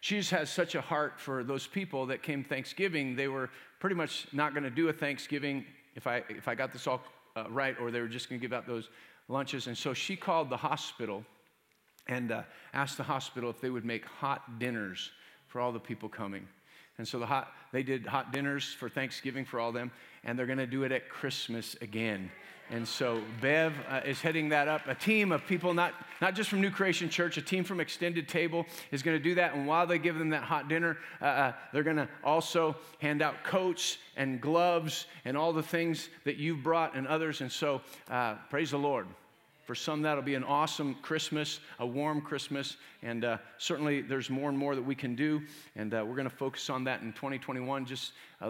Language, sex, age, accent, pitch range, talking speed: English, male, 40-59, American, 125-160 Hz, 225 wpm